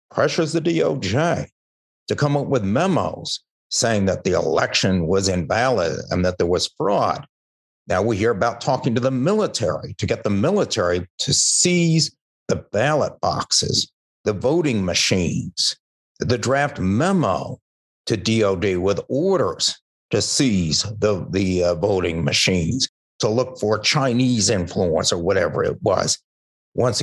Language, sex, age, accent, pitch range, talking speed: English, male, 60-79, American, 90-140 Hz, 140 wpm